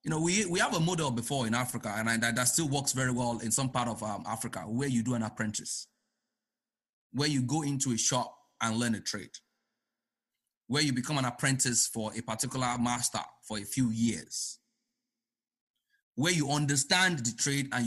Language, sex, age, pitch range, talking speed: English, male, 30-49, 120-175 Hz, 195 wpm